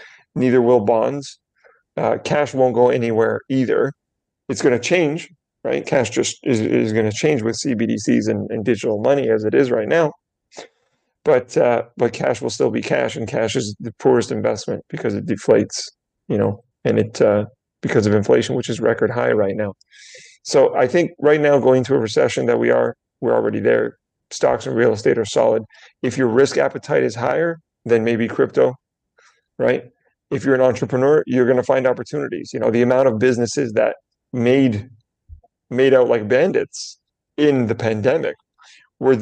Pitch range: 115-145 Hz